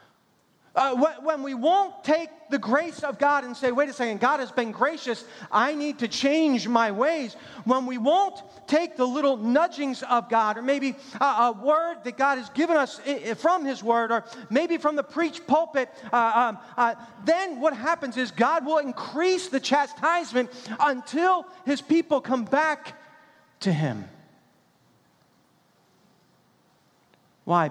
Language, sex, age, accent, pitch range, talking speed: English, male, 40-59, American, 210-300 Hz, 155 wpm